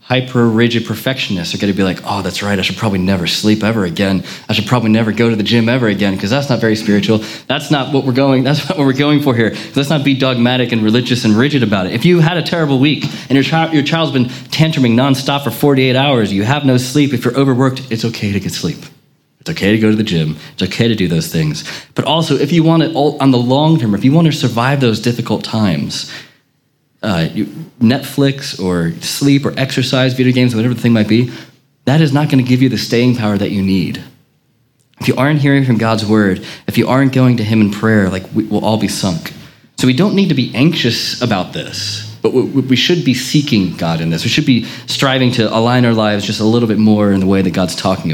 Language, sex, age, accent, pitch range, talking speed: English, male, 30-49, American, 110-145 Hz, 250 wpm